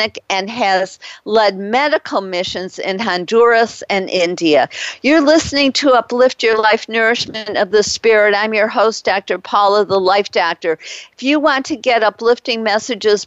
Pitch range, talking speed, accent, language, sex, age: 205-245 Hz, 155 wpm, American, English, female, 50-69